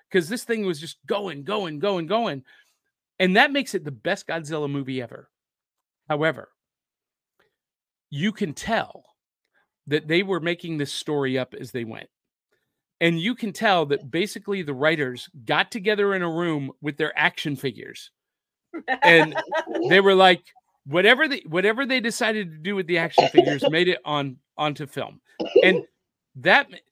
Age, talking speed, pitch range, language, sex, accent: 40-59, 160 wpm, 150-215 Hz, English, male, American